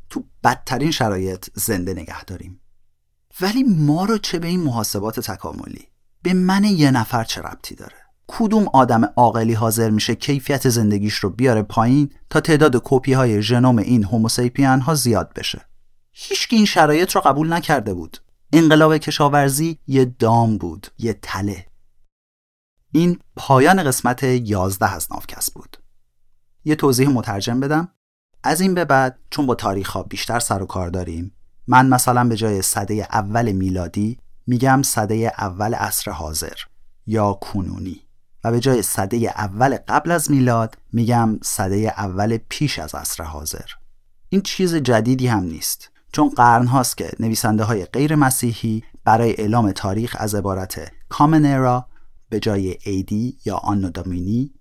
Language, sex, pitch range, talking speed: Persian, male, 100-135 Hz, 145 wpm